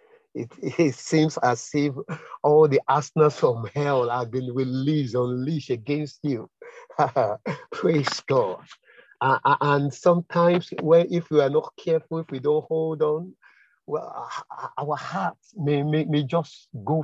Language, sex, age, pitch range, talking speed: English, male, 50-69, 140-165 Hz, 140 wpm